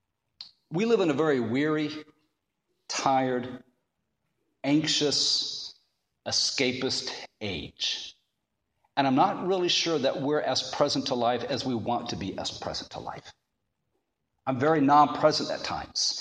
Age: 50-69